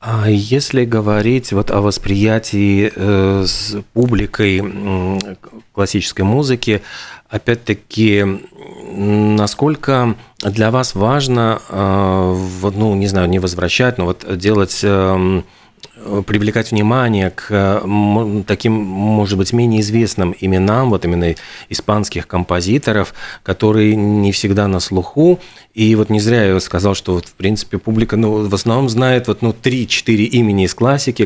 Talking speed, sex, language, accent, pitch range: 120 wpm, male, Russian, native, 100-115 Hz